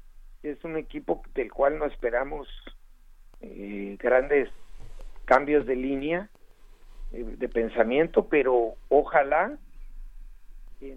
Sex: male